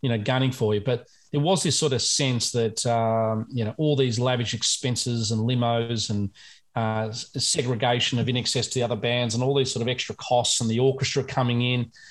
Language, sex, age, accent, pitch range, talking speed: English, male, 30-49, Australian, 115-135 Hz, 220 wpm